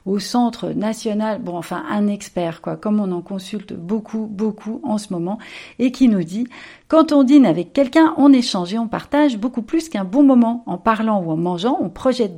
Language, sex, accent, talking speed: French, female, French, 215 wpm